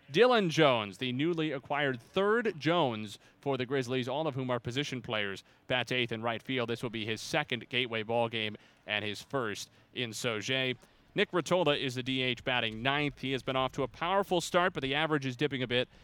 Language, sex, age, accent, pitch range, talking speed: English, male, 30-49, American, 115-150 Hz, 210 wpm